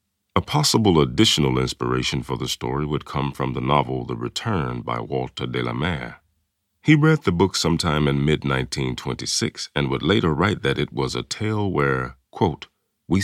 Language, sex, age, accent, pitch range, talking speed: English, male, 40-59, American, 70-100 Hz, 170 wpm